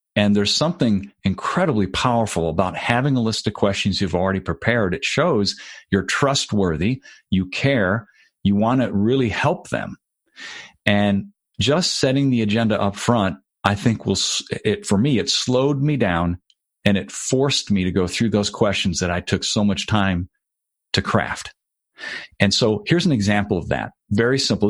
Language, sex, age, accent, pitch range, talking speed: English, male, 40-59, American, 95-115 Hz, 170 wpm